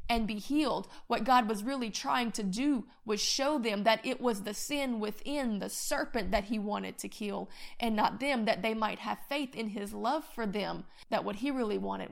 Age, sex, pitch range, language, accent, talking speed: 30-49, female, 210-250 Hz, English, American, 220 wpm